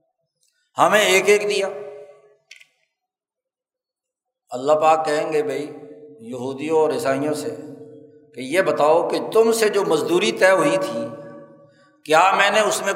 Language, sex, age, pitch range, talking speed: Urdu, male, 50-69, 175-285 Hz, 135 wpm